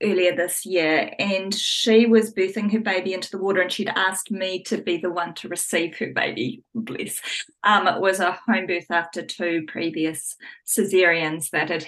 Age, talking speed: 20-39, 185 wpm